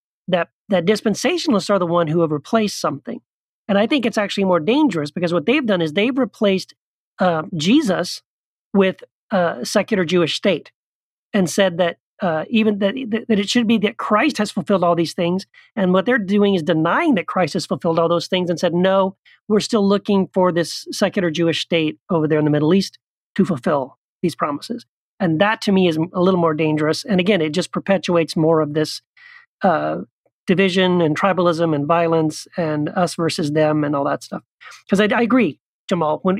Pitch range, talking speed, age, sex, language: 165-205 Hz, 200 wpm, 40-59, male, English